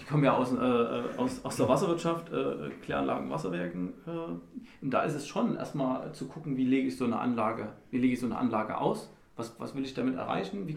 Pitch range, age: 120-155 Hz, 40-59